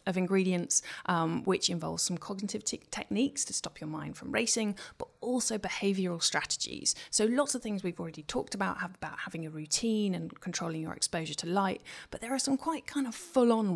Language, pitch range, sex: English, 170-230 Hz, female